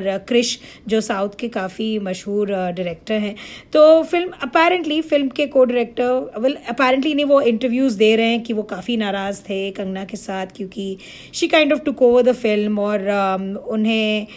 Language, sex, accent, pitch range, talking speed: Hindi, female, native, 210-255 Hz, 170 wpm